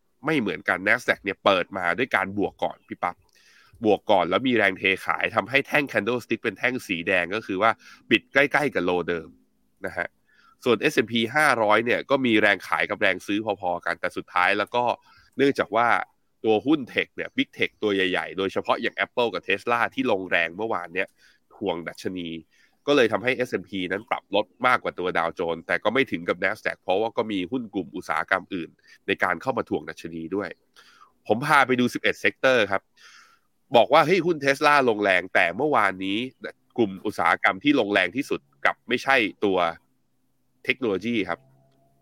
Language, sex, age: Thai, male, 20-39